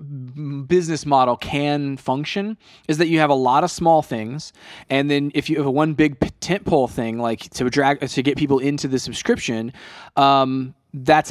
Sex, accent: male, American